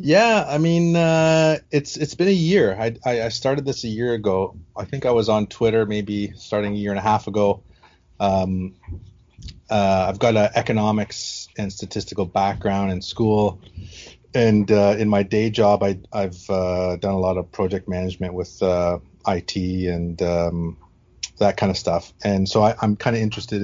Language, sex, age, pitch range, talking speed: English, male, 30-49, 90-105 Hz, 185 wpm